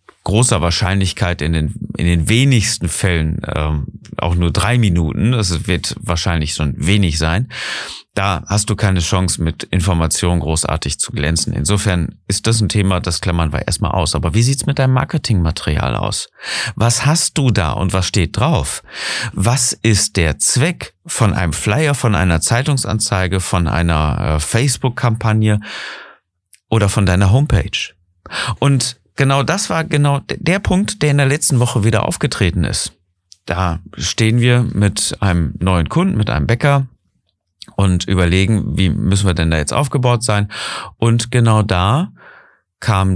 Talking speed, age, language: 155 wpm, 40-59, German